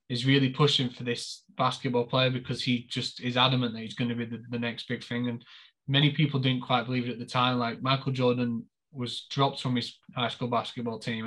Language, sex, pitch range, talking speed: English, male, 120-135 Hz, 230 wpm